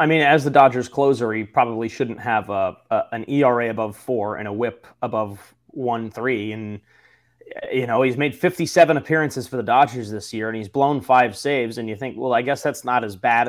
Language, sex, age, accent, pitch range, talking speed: English, male, 20-39, American, 115-145 Hz, 220 wpm